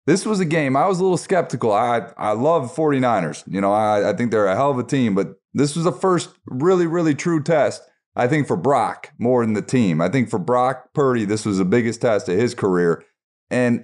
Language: English